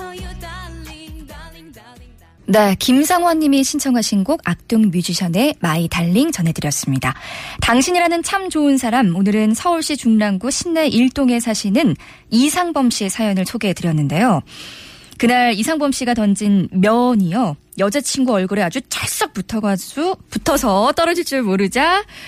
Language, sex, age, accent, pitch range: Korean, female, 20-39, native, 195-280 Hz